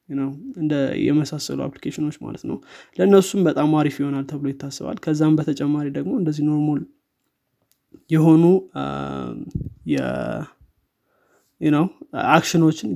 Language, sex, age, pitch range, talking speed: Amharic, male, 20-39, 145-165 Hz, 95 wpm